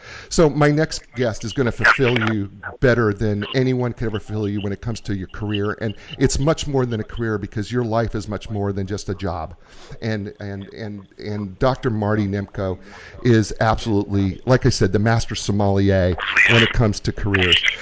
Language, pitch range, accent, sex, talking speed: English, 105-140 Hz, American, male, 195 wpm